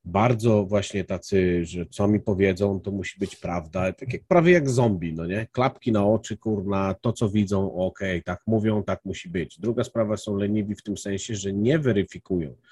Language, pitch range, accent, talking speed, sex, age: Polish, 95-125 Hz, native, 200 wpm, male, 40-59